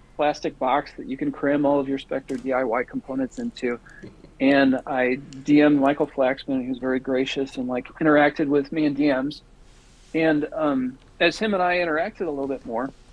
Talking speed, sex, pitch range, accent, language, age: 180 wpm, male, 135-165 Hz, American, English, 40-59